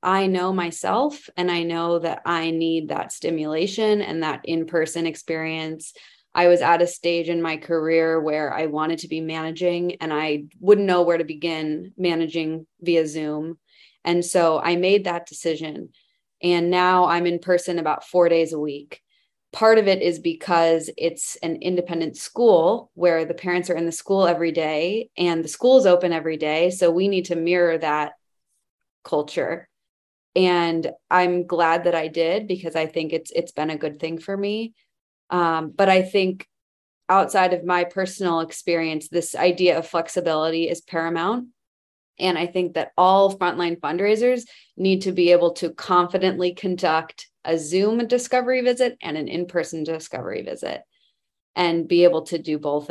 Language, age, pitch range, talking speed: English, 20-39, 160-185 Hz, 165 wpm